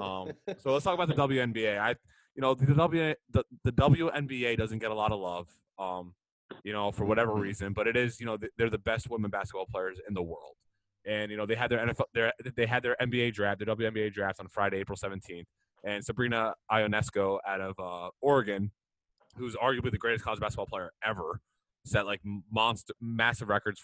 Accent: American